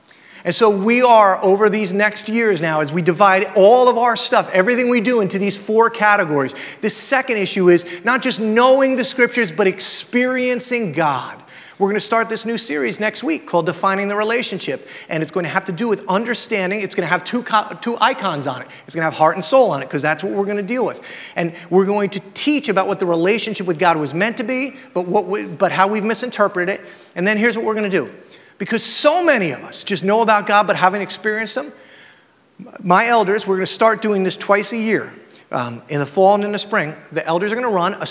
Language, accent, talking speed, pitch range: English, American, 240 wpm, 180-230 Hz